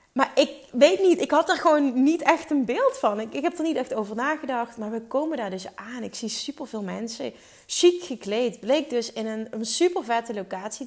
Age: 30-49